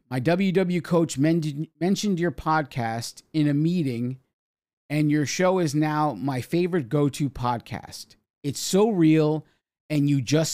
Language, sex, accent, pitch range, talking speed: English, male, American, 125-165 Hz, 135 wpm